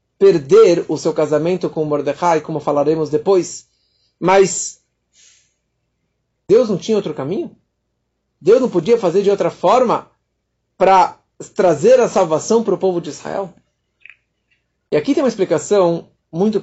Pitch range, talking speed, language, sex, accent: 150-225 Hz, 135 wpm, Portuguese, male, Brazilian